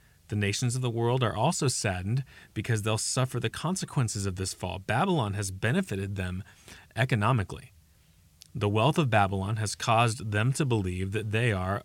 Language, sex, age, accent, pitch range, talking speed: English, male, 30-49, American, 100-125 Hz, 165 wpm